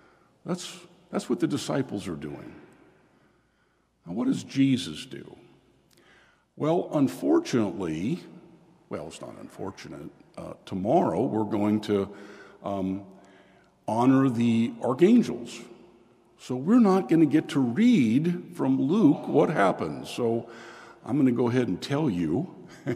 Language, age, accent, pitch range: English, 60-79, American, 110-160 Hz